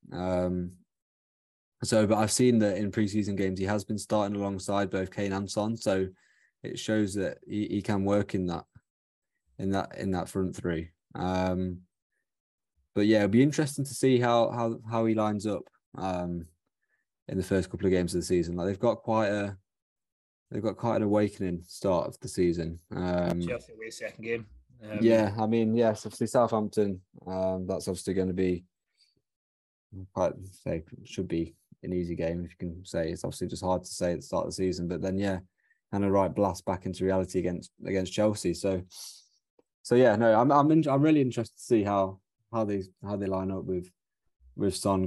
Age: 20-39